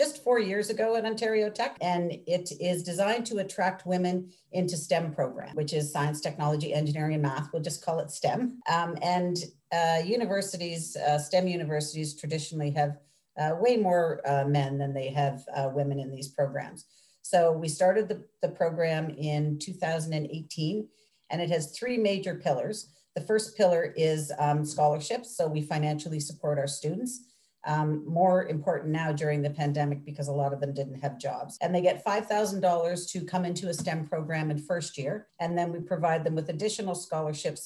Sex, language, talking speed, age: female, English, 180 wpm, 40-59